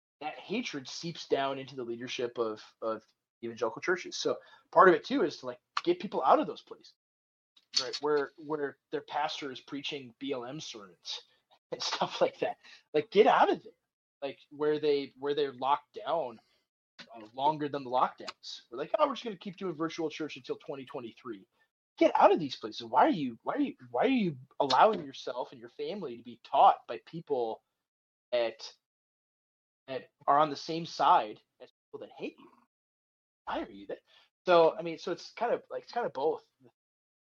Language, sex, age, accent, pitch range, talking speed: English, male, 20-39, American, 135-225 Hz, 185 wpm